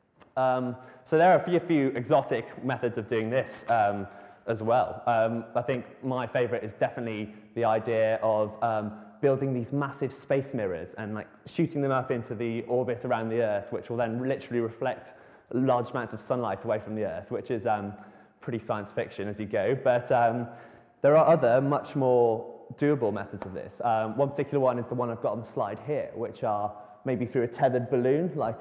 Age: 20-39